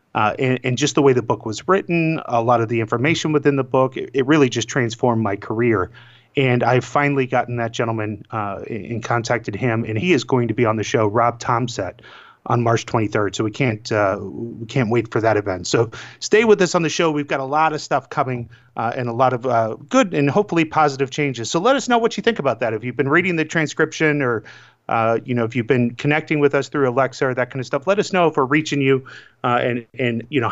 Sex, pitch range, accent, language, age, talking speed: male, 115-150 Hz, American, English, 30-49, 260 wpm